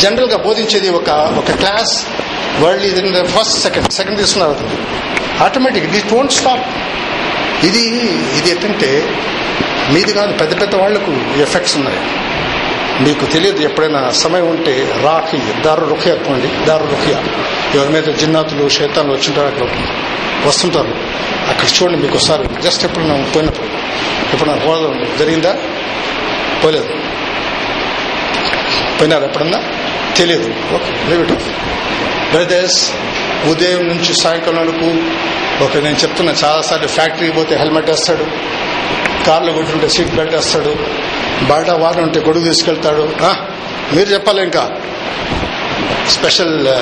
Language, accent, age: Telugu, native, 60-79